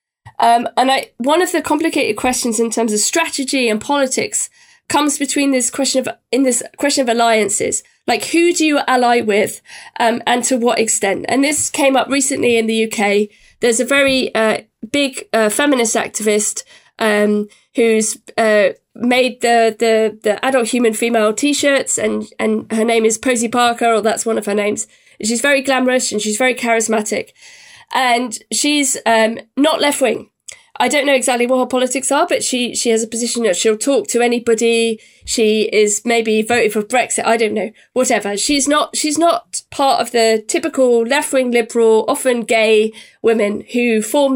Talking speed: 180 wpm